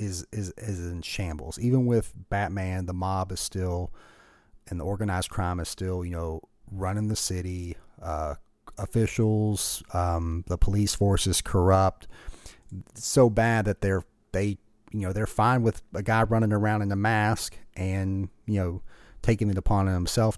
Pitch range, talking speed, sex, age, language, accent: 95-110 Hz, 165 wpm, male, 30-49, English, American